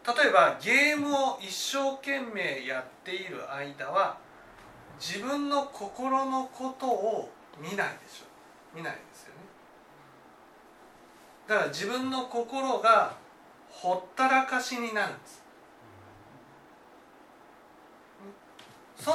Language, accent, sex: Japanese, native, male